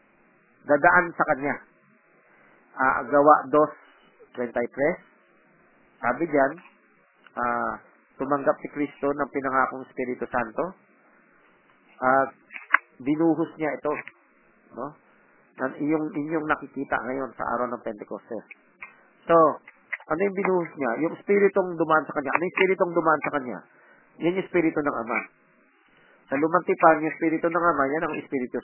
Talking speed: 130 wpm